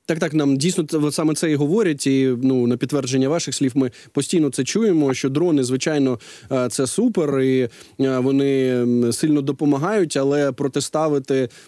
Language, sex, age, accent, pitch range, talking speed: Ukrainian, male, 20-39, native, 135-170 Hz, 150 wpm